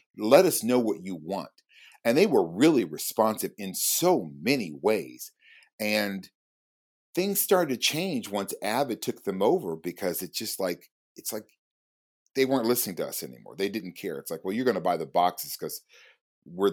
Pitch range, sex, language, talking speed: 95-135 Hz, male, English, 185 wpm